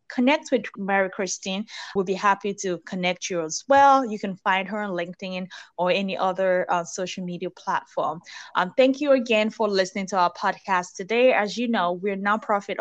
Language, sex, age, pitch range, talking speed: English, female, 20-39, 180-215 Hz, 190 wpm